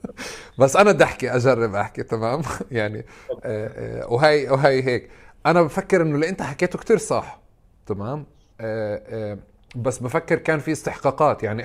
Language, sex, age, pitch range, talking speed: Arabic, male, 30-49, 110-135 Hz, 155 wpm